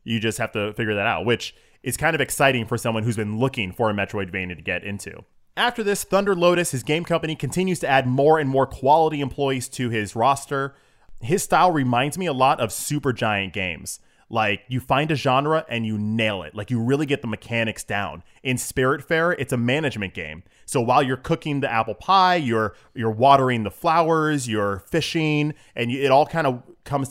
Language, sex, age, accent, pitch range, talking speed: English, male, 20-39, American, 105-140 Hz, 210 wpm